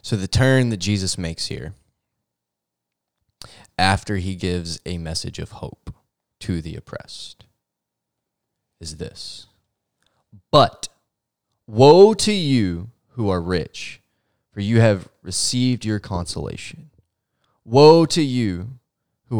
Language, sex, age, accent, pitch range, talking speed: English, male, 20-39, American, 95-120 Hz, 110 wpm